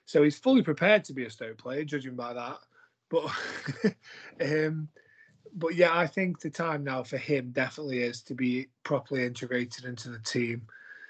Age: 20-39